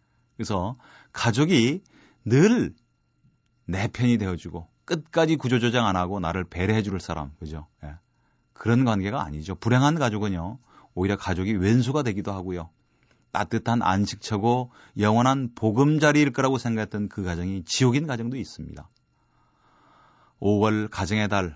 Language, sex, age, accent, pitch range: Korean, male, 30-49, native, 95-120 Hz